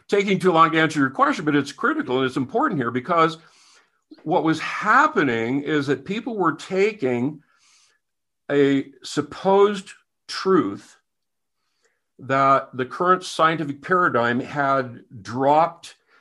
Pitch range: 130-160 Hz